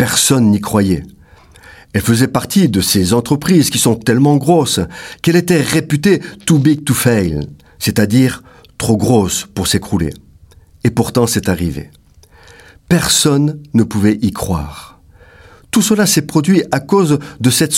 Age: 50-69